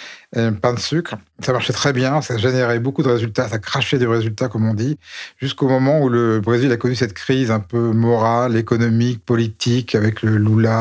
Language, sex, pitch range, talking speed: French, male, 115-130 Hz, 210 wpm